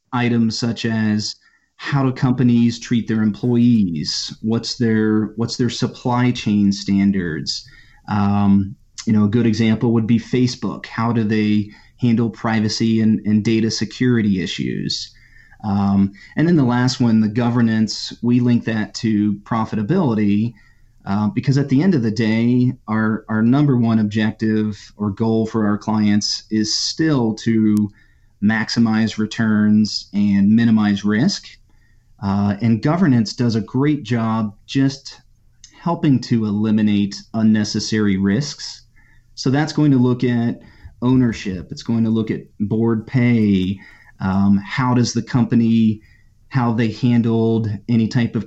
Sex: male